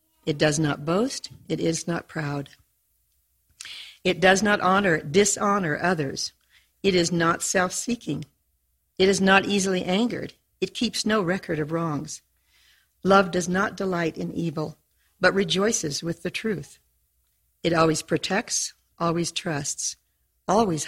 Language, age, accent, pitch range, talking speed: English, 50-69, American, 155-200 Hz, 130 wpm